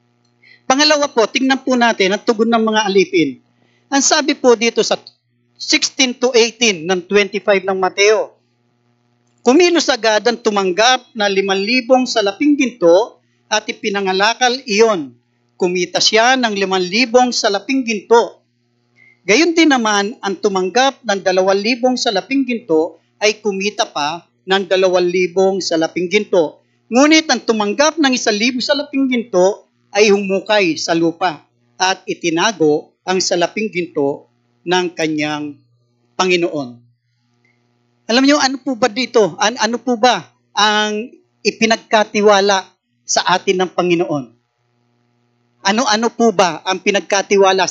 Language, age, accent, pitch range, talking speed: English, 40-59, Filipino, 170-240 Hz, 120 wpm